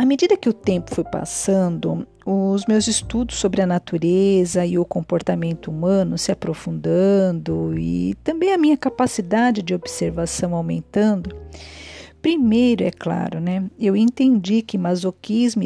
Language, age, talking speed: Portuguese, 50-69, 135 wpm